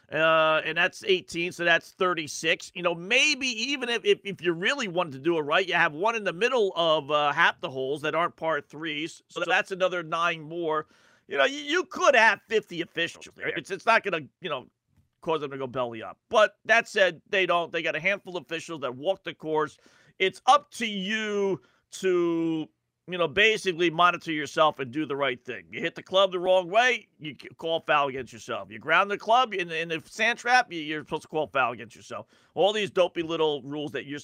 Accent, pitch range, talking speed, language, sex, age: American, 155-195 Hz, 220 wpm, English, male, 40-59